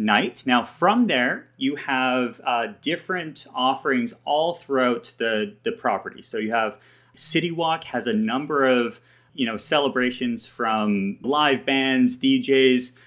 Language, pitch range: English, 125-165 Hz